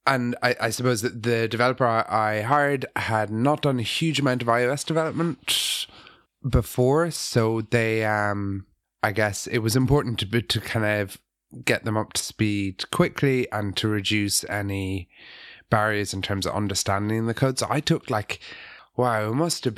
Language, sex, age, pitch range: English, male, 30-49, 100-120 Hz